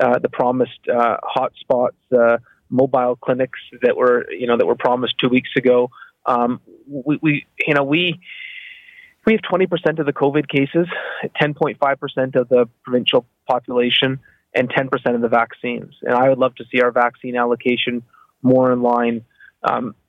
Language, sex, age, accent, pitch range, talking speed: English, male, 30-49, American, 125-150 Hz, 160 wpm